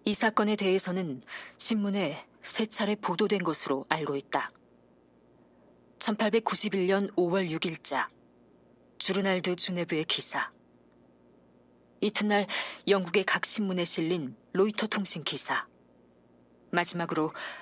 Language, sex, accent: Korean, female, native